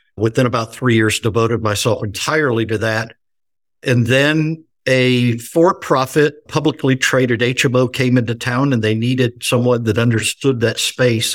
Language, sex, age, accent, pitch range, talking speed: English, male, 60-79, American, 110-130 Hz, 145 wpm